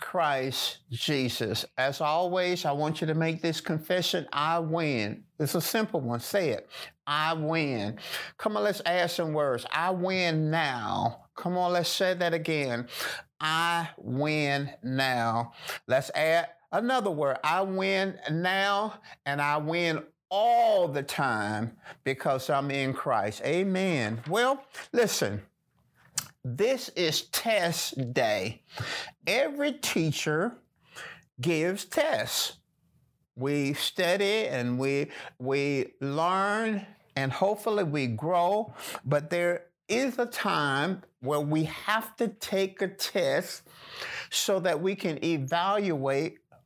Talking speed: 120 wpm